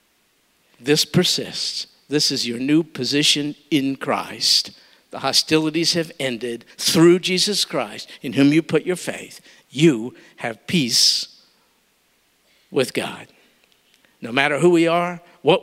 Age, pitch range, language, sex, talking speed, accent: 50-69, 160-225 Hz, English, male, 125 wpm, American